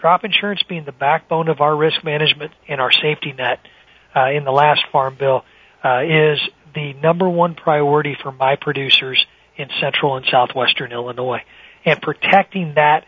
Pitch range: 150-180 Hz